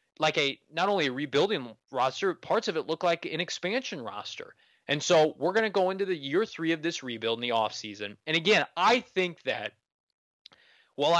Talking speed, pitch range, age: 205 wpm, 125-160 Hz, 20-39